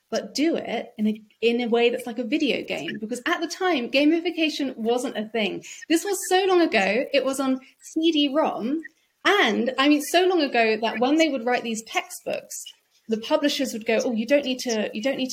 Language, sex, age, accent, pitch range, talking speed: English, female, 30-49, British, 215-285 Hz, 215 wpm